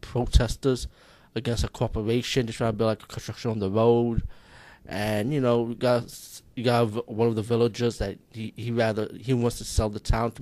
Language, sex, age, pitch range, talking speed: English, male, 20-39, 105-120 Hz, 205 wpm